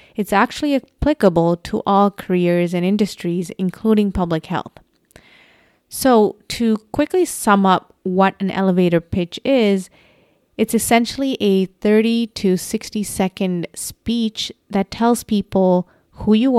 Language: English